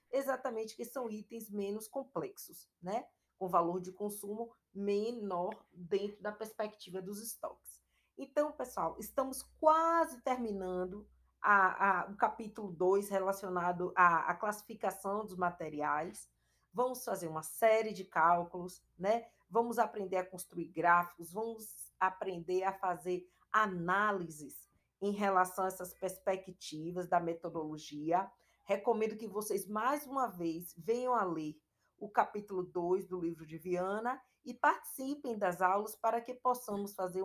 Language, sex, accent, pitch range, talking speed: Portuguese, female, Brazilian, 180-220 Hz, 130 wpm